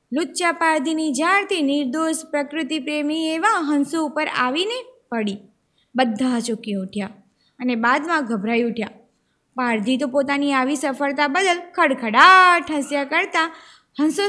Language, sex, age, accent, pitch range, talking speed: Gujarati, female, 20-39, native, 265-355 Hz, 120 wpm